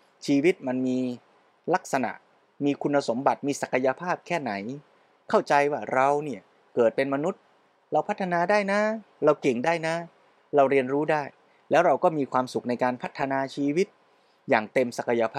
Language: Thai